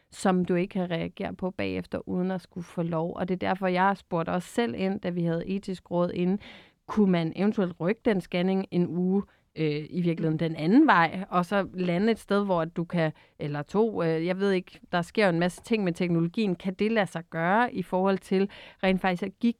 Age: 30-49